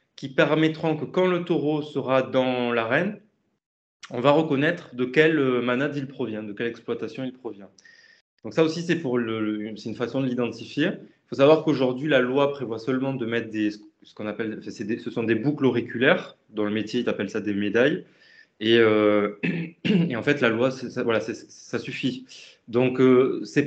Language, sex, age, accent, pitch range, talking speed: French, male, 20-39, French, 115-150 Hz, 200 wpm